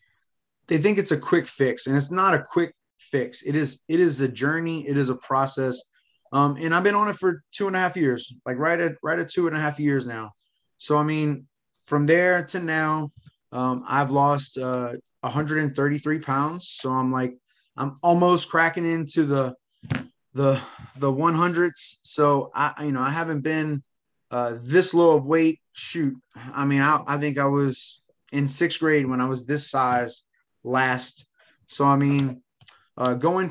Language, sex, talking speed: English, male, 185 wpm